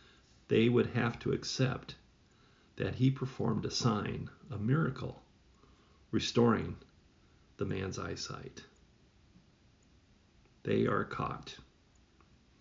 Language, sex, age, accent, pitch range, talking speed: English, male, 50-69, American, 105-130 Hz, 90 wpm